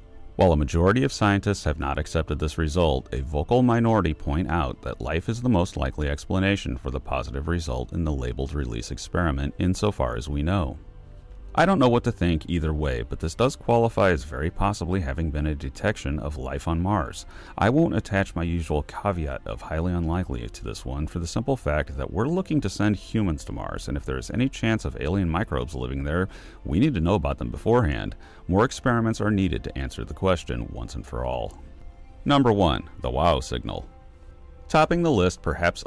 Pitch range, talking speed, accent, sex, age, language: 70-100 Hz, 200 wpm, American, male, 40-59, English